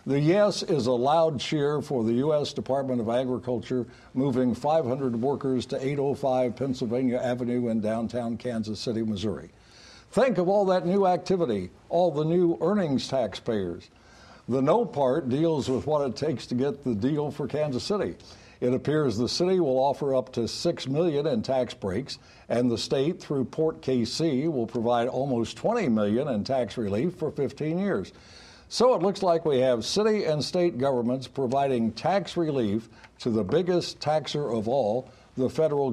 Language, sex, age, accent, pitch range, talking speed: English, male, 60-79, American, 120-155 Hz, 170 wpm